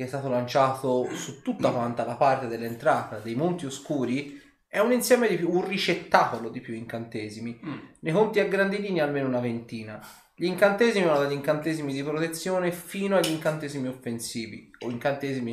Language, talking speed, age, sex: Italian, 165 wpm, 20-39, male